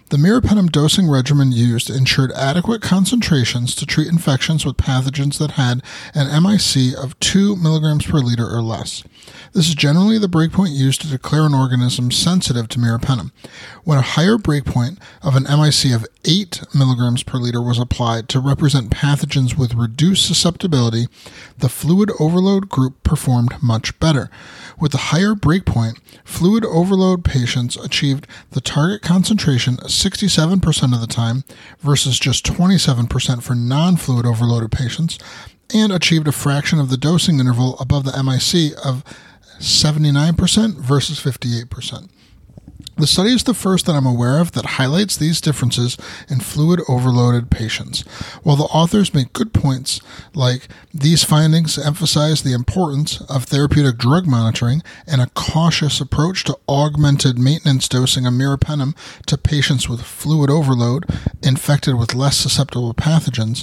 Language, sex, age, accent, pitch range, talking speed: English, male, 30-49, American, 125-160 Hz, 145 wpm